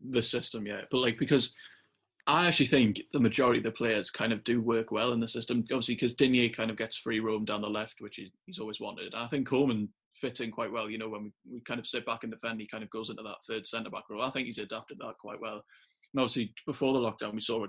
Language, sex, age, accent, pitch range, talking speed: English, male, 20-39, British, 110-130 Hz, 270 wpm